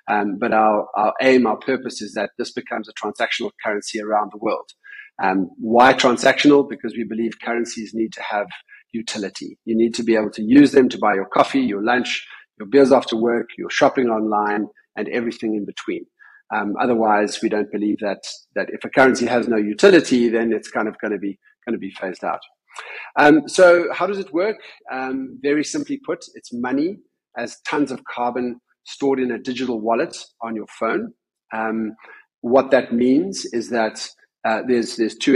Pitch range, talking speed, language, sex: 110-140 Hz, 185 wpm, English, male